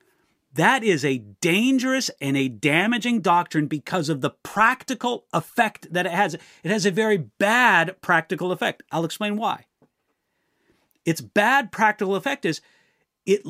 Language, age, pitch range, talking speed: English, 40-59, 165-240 Hz, 140 wpm